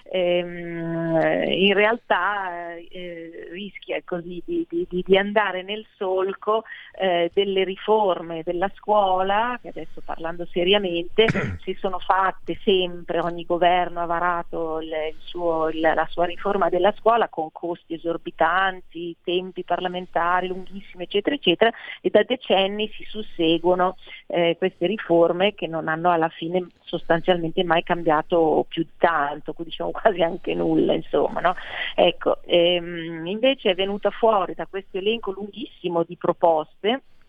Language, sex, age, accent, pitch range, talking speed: Italian, female, 40-59, native, 170-195 Hz, 120 wpm